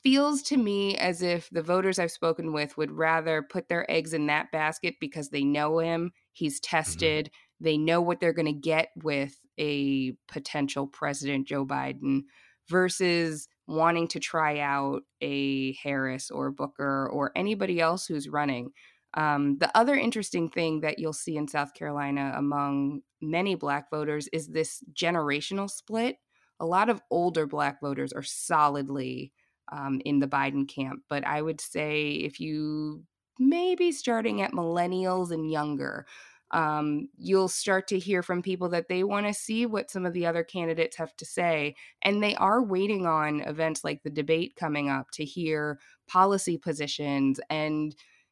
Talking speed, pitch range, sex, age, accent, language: 165 wpm, 145-180 Hz, female, 20-39, American, English